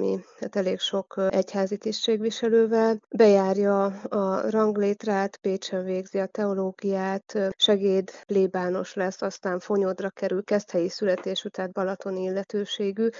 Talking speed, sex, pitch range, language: 110 wpm, female, 190-210 Hz, Hungarian